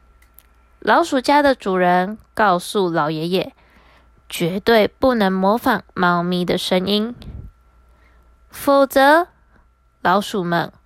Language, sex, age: Chinese, female, 20-39